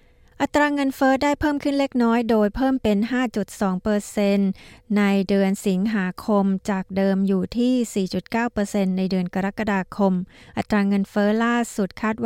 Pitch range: 200-235 Hz